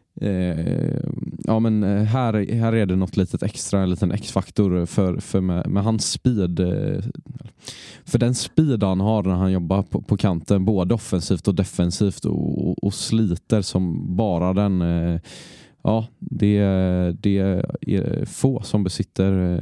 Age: 20-39